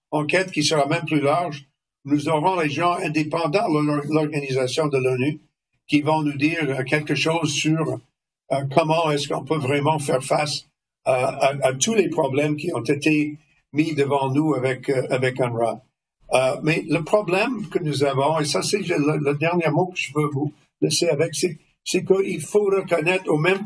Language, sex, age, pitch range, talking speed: French, male, 60-79, 145-175 Hz, 180 wpm